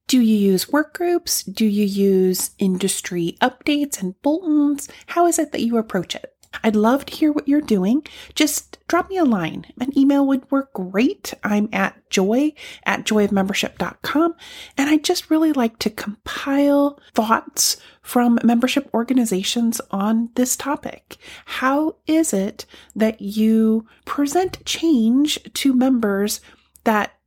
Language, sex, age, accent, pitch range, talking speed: English, female, 30-49, American, 205-290 Hz, 145 wpm